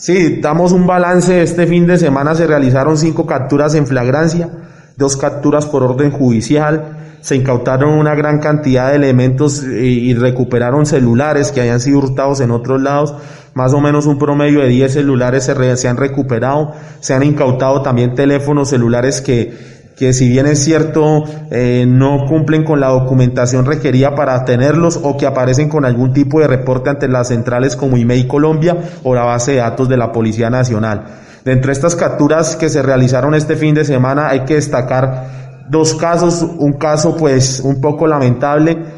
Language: Spanish